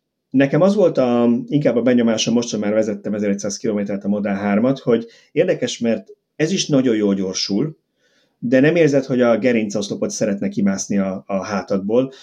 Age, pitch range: 30-49, 100-130 Hz